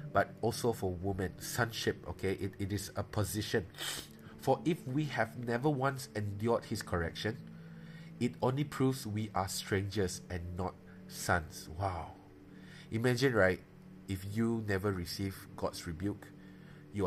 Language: English